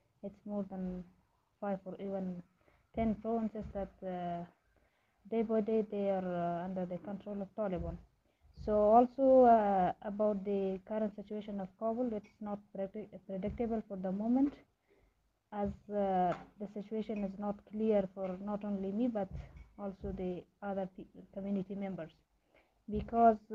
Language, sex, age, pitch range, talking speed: English, female, 20-39, 190-215 Hz, 140 wpm